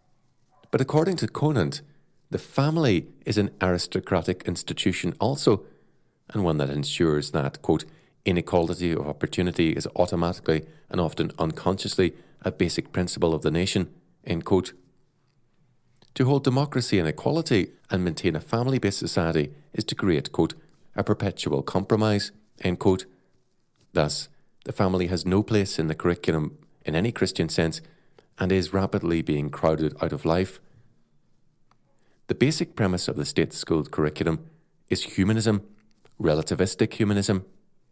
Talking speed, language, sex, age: 135 wpm, English, male, 40-59